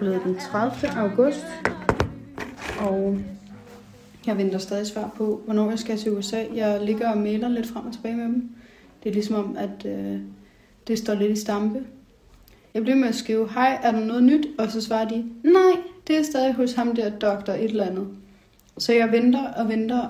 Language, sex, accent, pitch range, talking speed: Danish, female, native, 200-230 Hz, 195 wpm